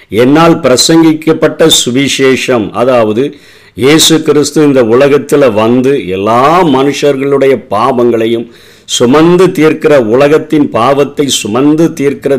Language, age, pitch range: Tamil, 50-69, 120-155 Hz